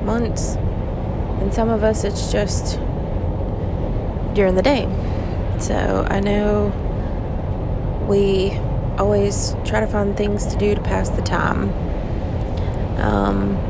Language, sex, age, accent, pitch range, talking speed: English, female, 20-39, American, 90-105 Hz, 115 wpm